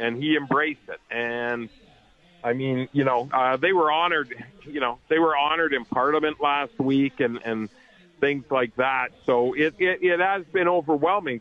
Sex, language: male, English